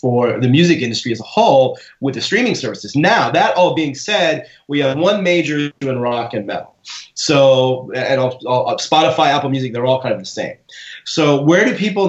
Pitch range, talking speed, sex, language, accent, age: 130-155 Hz, 200 wpm, male, English, American, 30-49